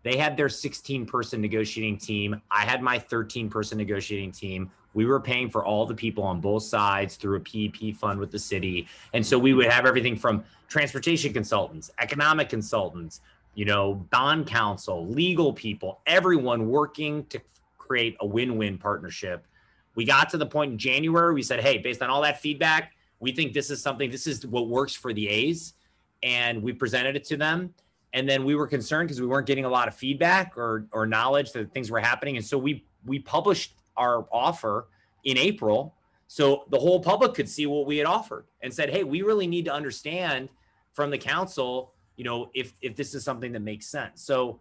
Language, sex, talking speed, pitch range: English, male, 200 wpm, 110-145 Hz